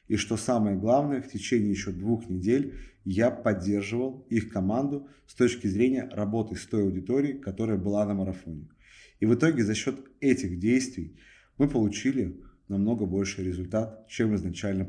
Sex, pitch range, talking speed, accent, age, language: male, 95-125 Hz, 155 wpm, native, 30-49, Russian